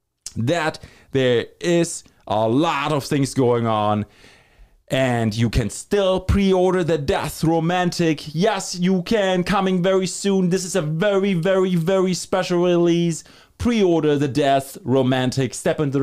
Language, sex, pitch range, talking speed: English, male, 115-185 Hz, 140 wpm